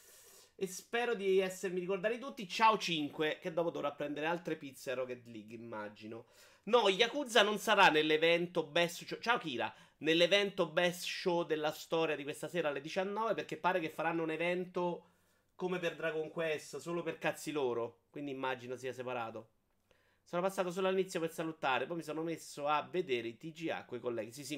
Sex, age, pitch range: male, 30-49, 125-180 Hz